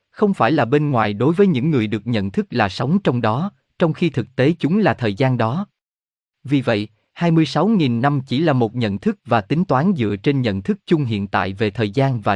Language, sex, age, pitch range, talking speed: Vietnamese, male, 20-39, 110-155 Hz, 235 wpm